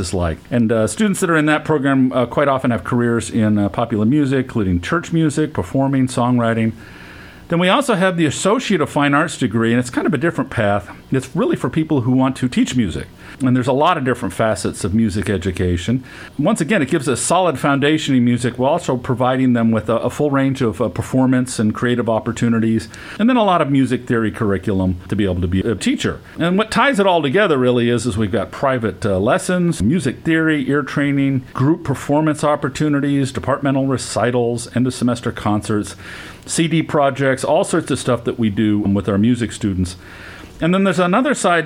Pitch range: 110-150 Hz